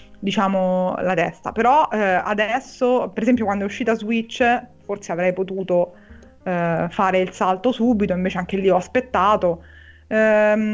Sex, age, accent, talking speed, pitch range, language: female, 20-39, native, 145 wpm, 190-225 Hz, Italian